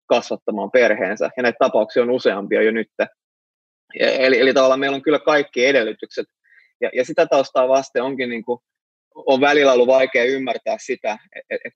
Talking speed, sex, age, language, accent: 175 wpm, male, 20-39, Finnish, native